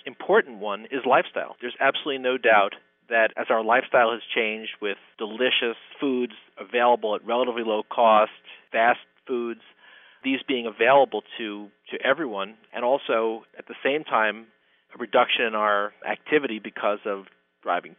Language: English